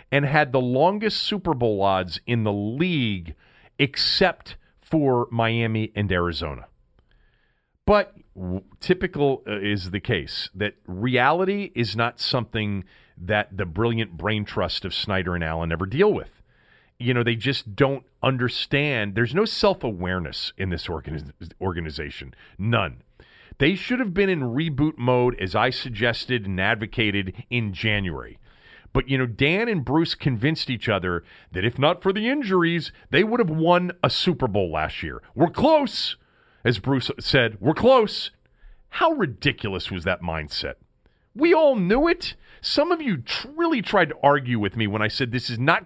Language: English